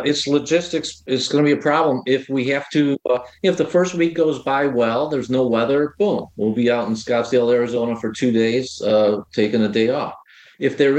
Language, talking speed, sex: English, 220 wpm, male